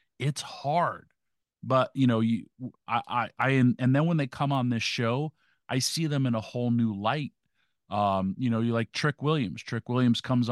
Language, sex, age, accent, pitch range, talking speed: English, male, 40-59, American, 115-140 Hz, 200 wpm